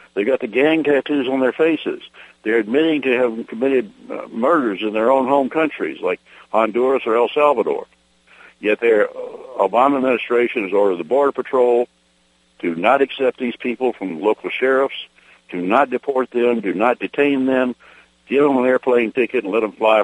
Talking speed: 175 wpm